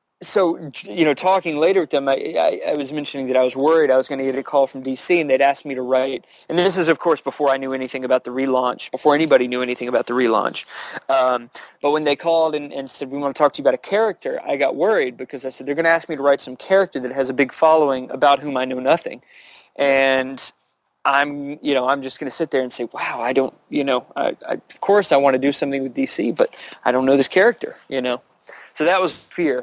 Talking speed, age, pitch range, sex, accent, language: 265 wpm, 30-49, 130-155 Hz, male, American, English